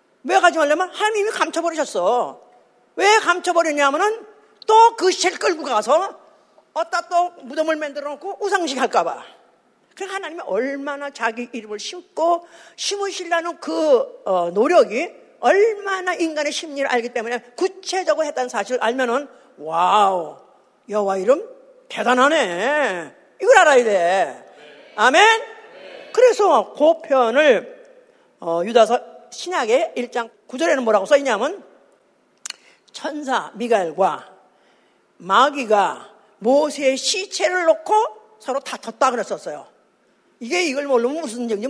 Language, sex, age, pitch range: Korean, female, 40-59, 250-365 Hz